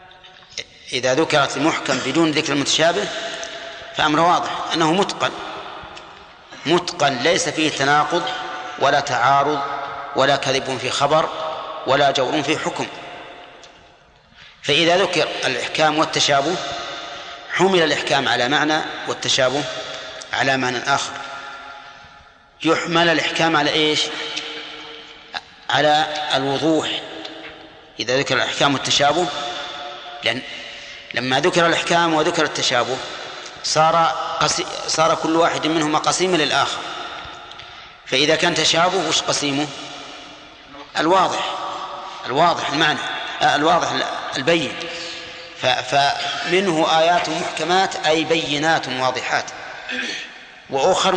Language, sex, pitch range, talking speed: Arabic, male, 140-165 Hz, 90 wpm